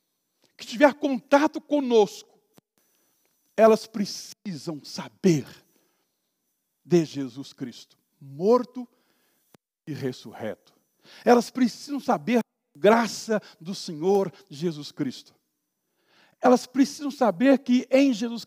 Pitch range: 175-245 Hz